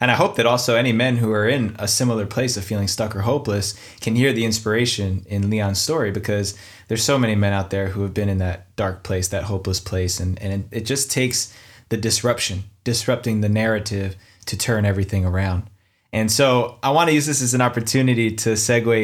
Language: English